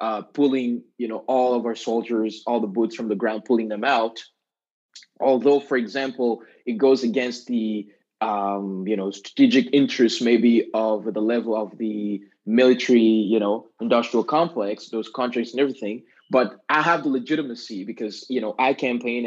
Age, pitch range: 20-39, 110-130 Hz